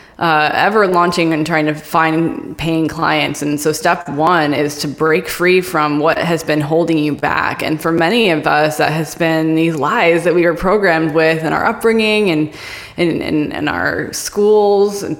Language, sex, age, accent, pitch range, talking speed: English, female, 10-29, American, 160-190 Hz, 185 wpm